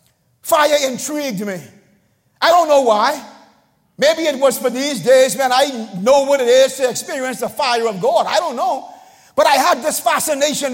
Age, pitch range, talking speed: 50-69, 230-295 Hz, 185 wpm